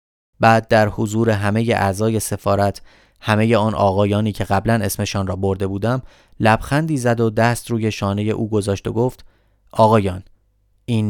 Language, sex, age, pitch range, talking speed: Persian, male, 30-49, 100-115 Hz, 150 wpm